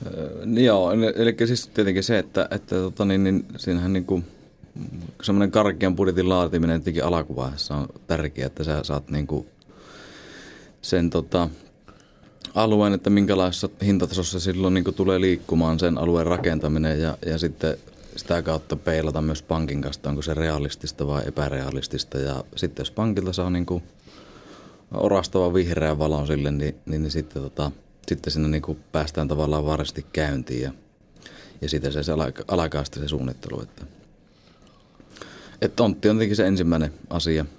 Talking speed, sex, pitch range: 145 wpm, male, 75-90 Hz